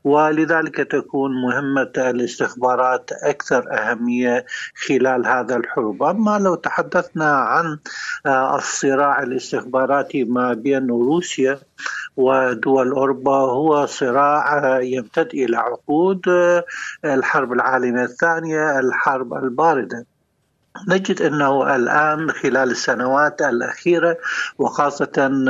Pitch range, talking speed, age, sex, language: 130-155 Hz, 85 wpm, 60-79, male, Arabic